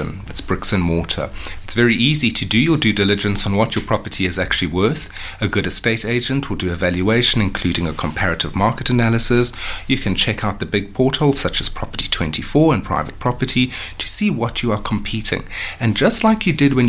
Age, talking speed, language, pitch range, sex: 30-49, 205 wpm, English, 90-120 Hz, male